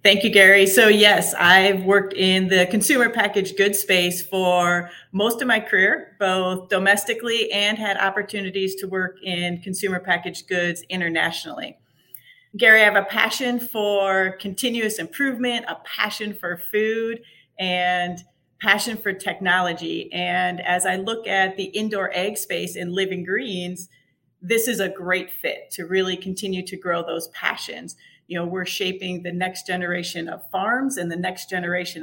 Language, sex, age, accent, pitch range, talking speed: English, female, 40-59, American, 180-205 Hz, 155 wpm